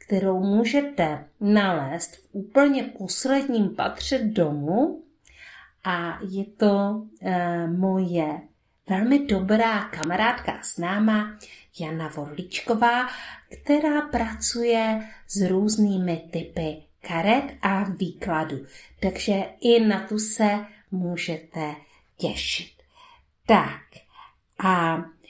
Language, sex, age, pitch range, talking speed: Czech, female, 50-69, 175-220 Hz, 90 wpm